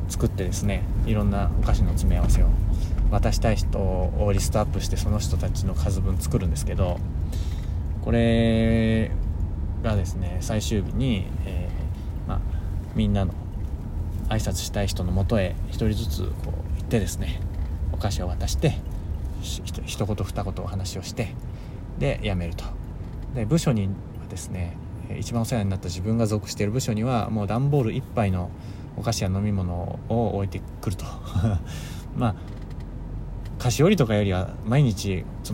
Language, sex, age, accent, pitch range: Japanese, male, 20-39, native, 90-110 Hz